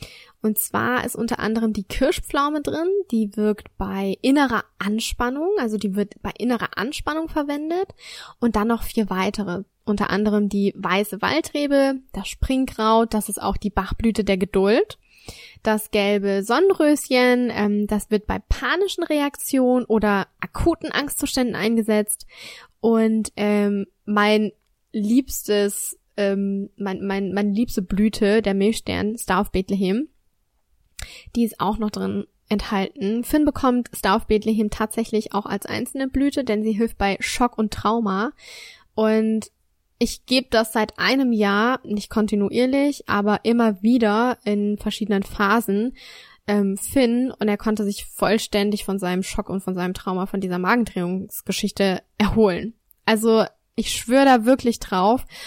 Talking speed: 140 wpm